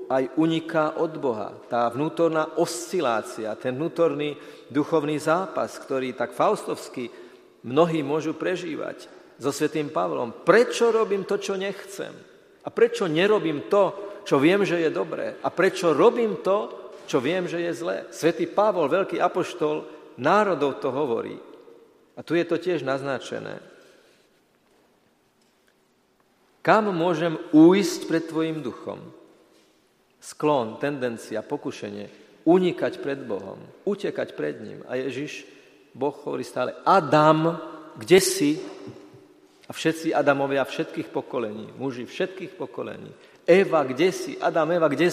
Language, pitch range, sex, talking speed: Slovak, 145-195 Hz, male, 125 wpm